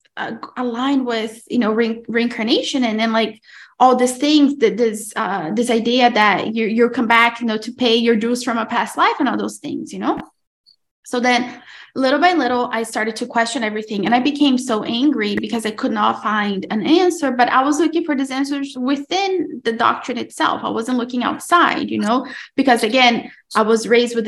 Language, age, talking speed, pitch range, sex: English, 20-39, 210 wpm, 220-260 Hz, female